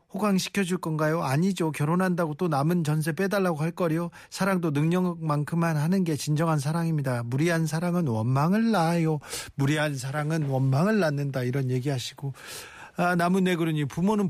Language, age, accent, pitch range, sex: Korean, 40-59, native, 150-195 Hz, male